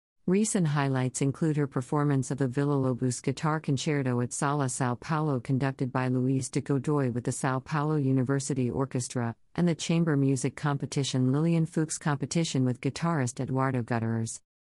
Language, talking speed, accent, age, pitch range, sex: English, 155 wpm, American, 50-69, 130-155 Hz, female